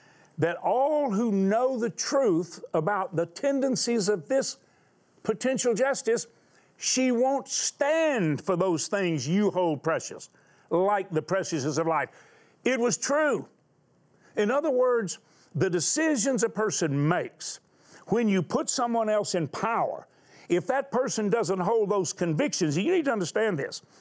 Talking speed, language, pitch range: 140 wpm, English, 165-235 Hz